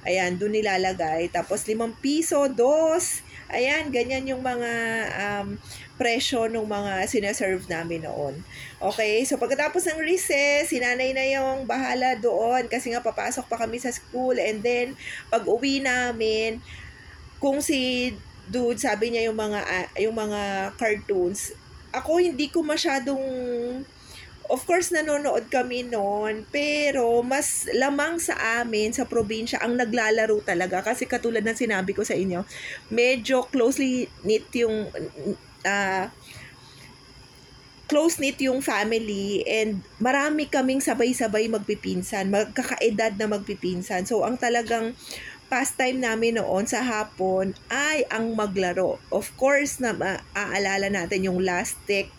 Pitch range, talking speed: 200-260 Hz, 130 wpm